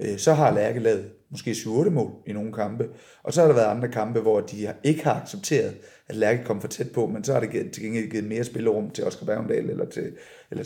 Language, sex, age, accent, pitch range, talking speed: Danish, male, 30-49, native, 105-125 Hz, 230 wpm